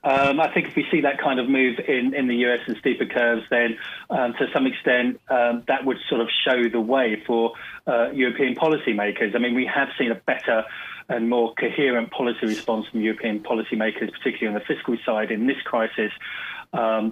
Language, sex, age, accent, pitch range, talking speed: English, male, 30-49, British, 115-130 Hz, 205 wpm